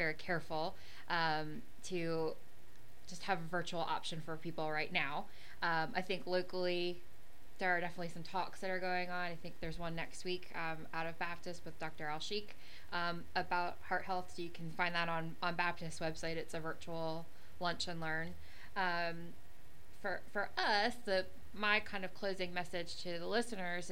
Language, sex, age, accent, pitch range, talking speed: English, female, 20-39, American, 165-185 Hz, 180 wpm